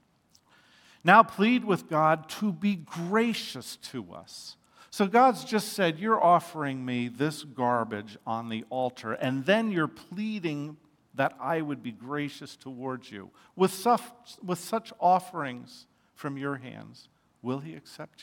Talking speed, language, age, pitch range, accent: 140 wpm, English, 50-69, 135-200 Hz, American